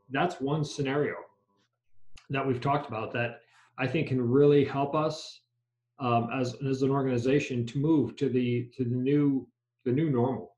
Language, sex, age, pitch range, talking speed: English, male, 40-59, 120-145 Hz, 165 wpm